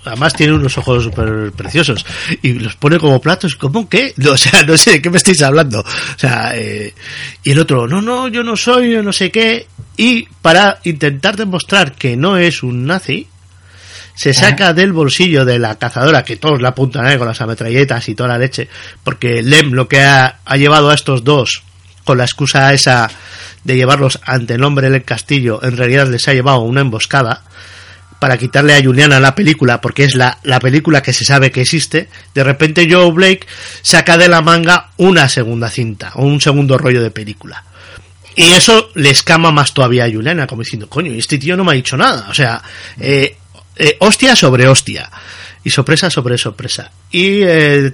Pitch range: 115-160 Hz